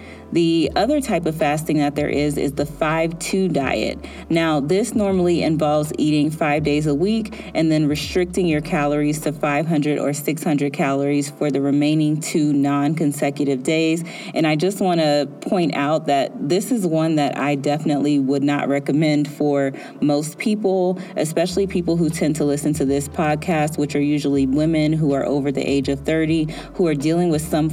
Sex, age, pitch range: female, 30-49, 140-165 Hz